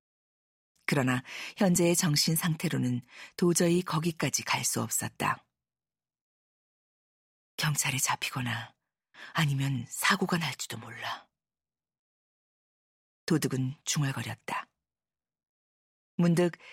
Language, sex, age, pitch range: Korean, female, 40-59, 125-175 Hz